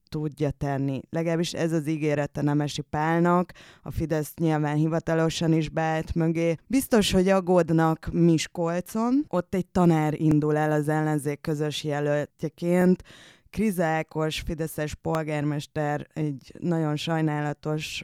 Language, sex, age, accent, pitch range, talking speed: English, female, 20-39, Finnish, 150-170 Hz, 115 wpm